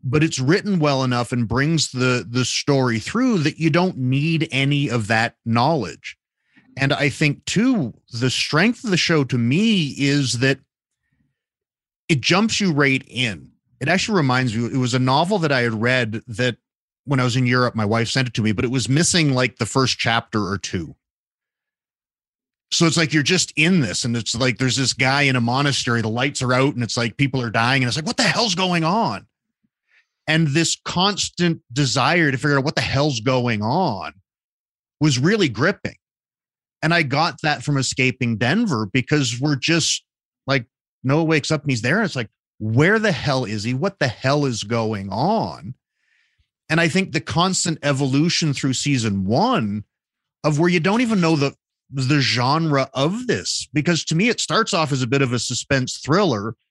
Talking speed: 195 wpm